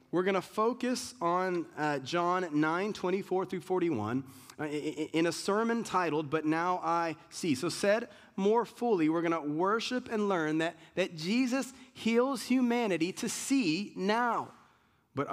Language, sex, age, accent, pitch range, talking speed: English, male, 30-49, American, 155-200 Hz, 155 wpm